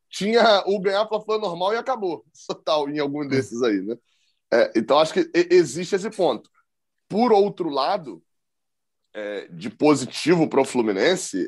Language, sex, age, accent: Portuguese, male, 20-39, Brazilian